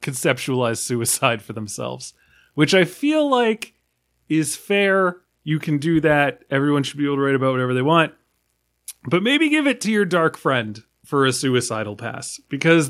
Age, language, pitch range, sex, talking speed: 30-49, English, 125-170 Hz, male, 170 wpm